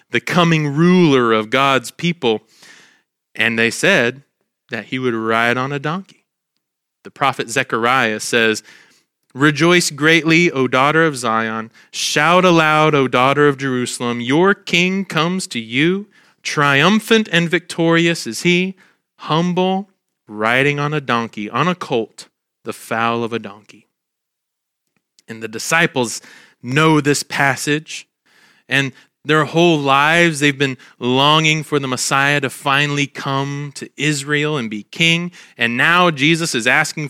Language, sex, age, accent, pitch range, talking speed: English, male, 30-49, American, 125-170 Hz, 135 wpm